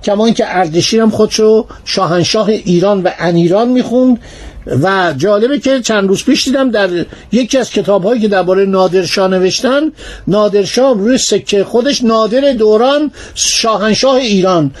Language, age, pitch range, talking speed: Persian, 50-69, 190-245 Hz, 140 wpm